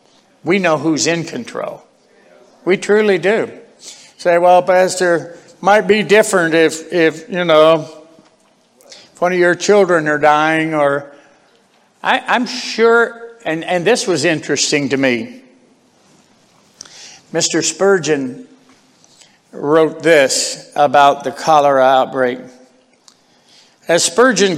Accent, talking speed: American, 115 wpm